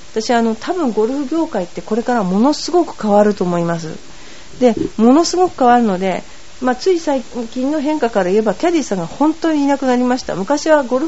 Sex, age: female, 40-59